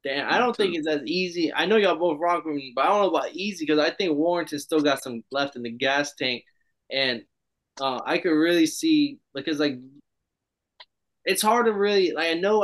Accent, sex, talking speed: American, male, 235 wpm